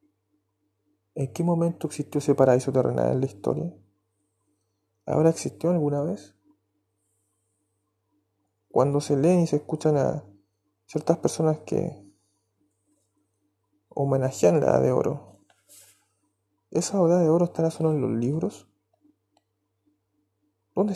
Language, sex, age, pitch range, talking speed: Spanish, male, 20-39, 100-150 Hz, 110 wpm